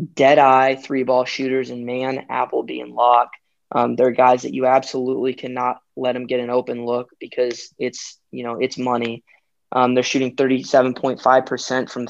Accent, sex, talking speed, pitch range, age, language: American, male, 175 wpm, 120-130 Hz, 10-29, English